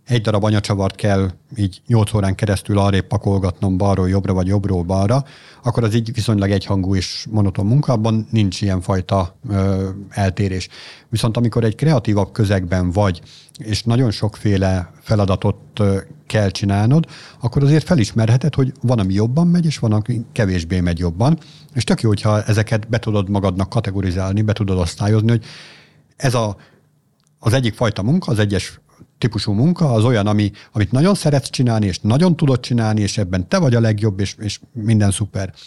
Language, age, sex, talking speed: Hungarian, 50-69, male, 170 wpm